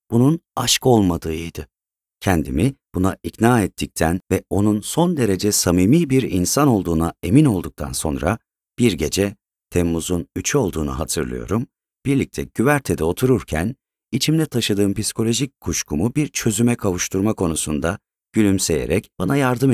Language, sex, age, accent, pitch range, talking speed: Turkish, male, 40-59, native, 85-125 Hz, 115 wpm